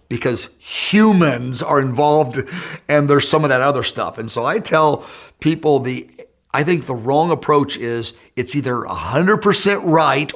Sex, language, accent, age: male, English, American, 50-69